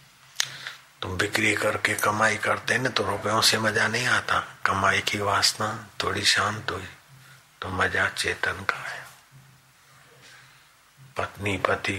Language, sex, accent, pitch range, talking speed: Hindi, male, native, 100-135 Hz, 130 wpm